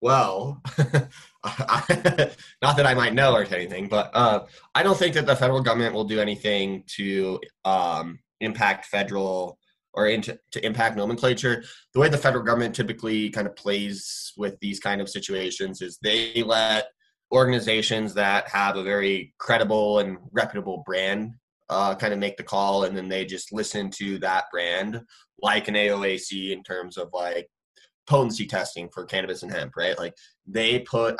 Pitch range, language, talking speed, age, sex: 100-130 Hz, English, 165 wpm, 20-39, male